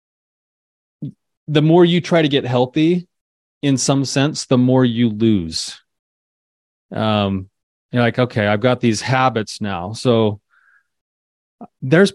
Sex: male